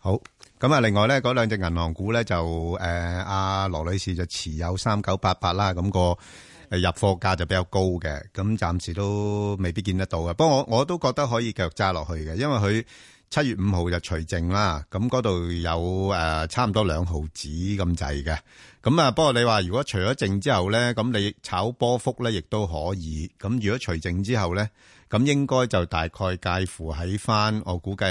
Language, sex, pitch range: Chinese, male, 90-110 Hz